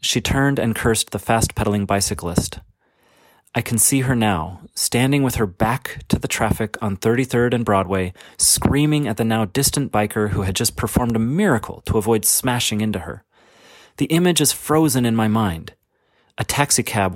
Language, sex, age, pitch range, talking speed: English, male, 30-49, 100-125 Hz, 170 wpm